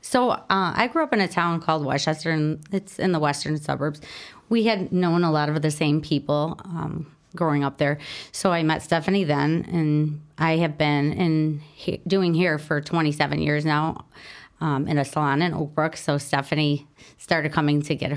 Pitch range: 150-170 Hz